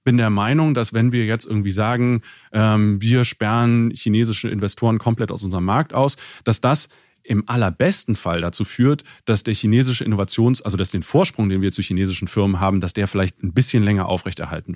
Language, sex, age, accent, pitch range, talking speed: German, male, 30-49, German, 100-130 Hz, 185 wpm